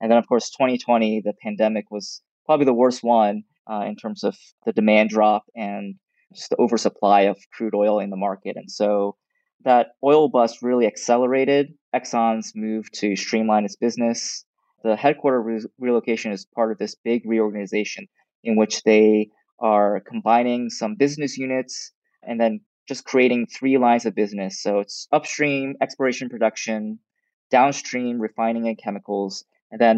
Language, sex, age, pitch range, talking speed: English, male, 20-39, 105-125 Hz, 160 wpm